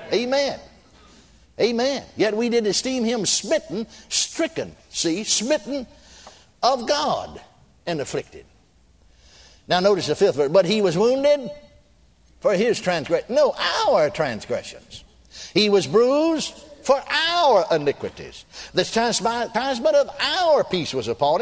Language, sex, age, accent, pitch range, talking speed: English, male, 60-79, American, 150-250 Hz, 120 wpm